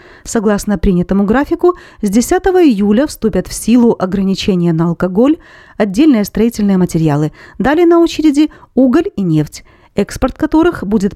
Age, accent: 40-59, native